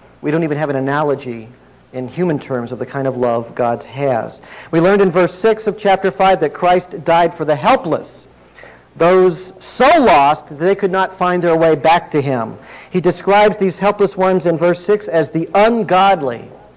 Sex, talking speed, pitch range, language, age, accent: male, 195 wpm, 140-185 Hz, English, 50-69, American